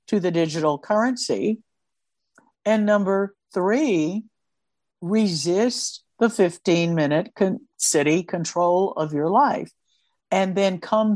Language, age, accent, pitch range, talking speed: English, 60-79, American, 170-210 Hz, 100 wpm